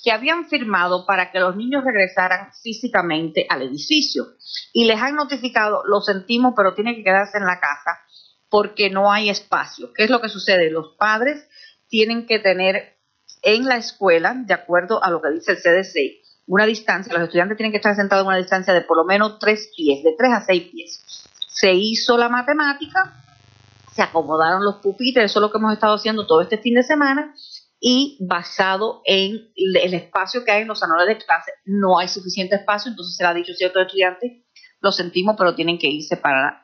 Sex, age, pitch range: female, 40-59, 175-225 Hz